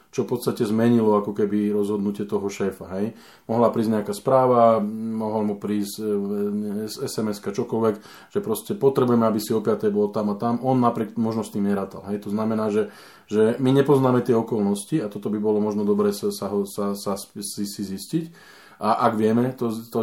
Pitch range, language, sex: 105-120 Hz, Slovak, male